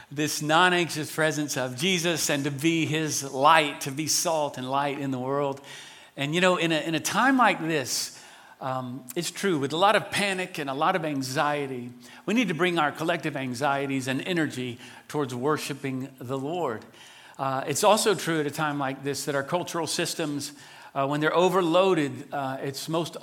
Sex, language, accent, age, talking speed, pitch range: male, English, American, 50-69, 190 wpm, 130-160 Hz